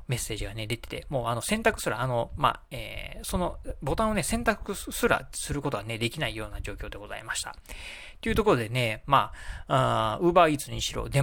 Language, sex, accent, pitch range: Japanese, male, native, 115-190 Hz